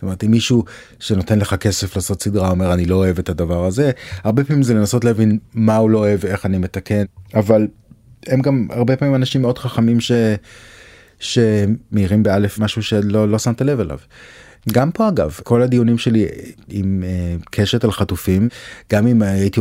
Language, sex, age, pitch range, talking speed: Hebrew, male, 30-49, 95-115 Hz, 170 wpm